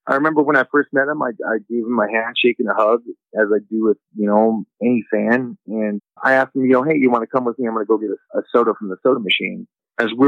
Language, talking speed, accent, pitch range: English, 300 wpm, American, 115-135 Hz